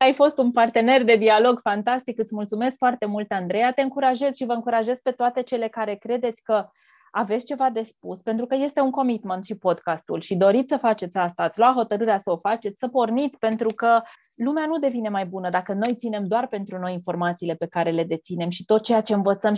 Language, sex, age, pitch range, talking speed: Romanian, female, 20-39, 200-250 Hz, 215 wpm